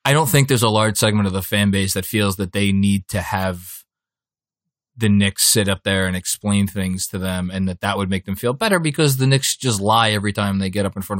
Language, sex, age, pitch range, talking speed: English, male, 20-39, 95-115 Hz, 255 wpm